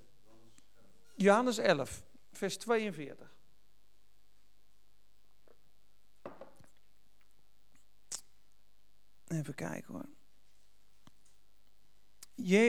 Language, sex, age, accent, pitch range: Dutch, male, 50-69, Dutch, 160-240 Hz